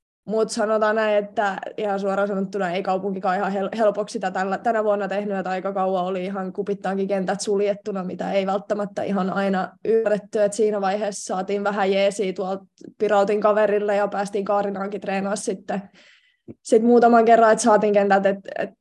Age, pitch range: 20-39, 190-210 Hz